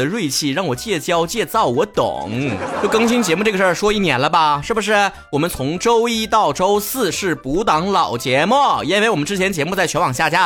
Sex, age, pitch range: male, 30-49, 140-235 Hz